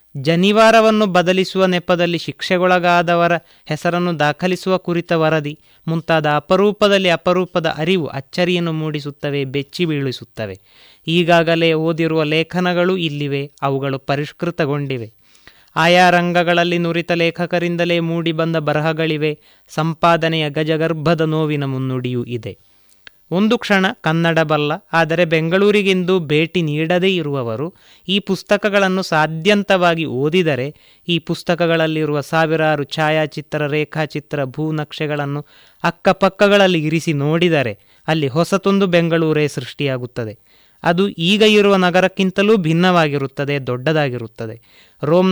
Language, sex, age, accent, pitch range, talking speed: Kannada, male, 20-39, native, 150-180 Hz, 90 wpm